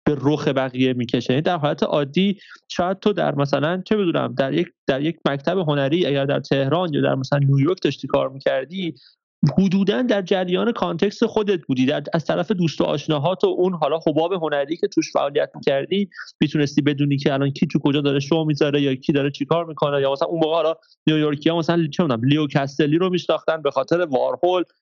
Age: 30-49